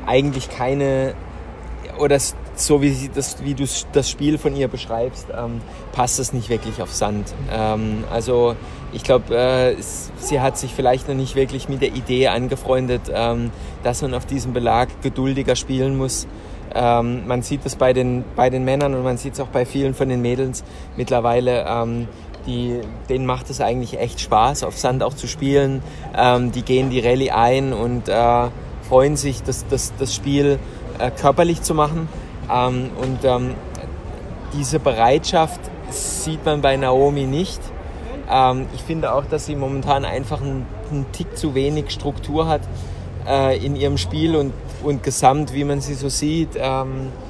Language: German